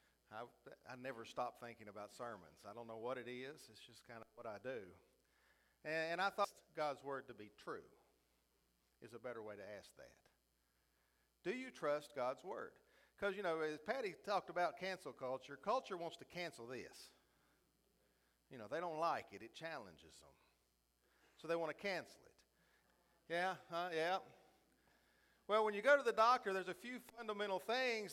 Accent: American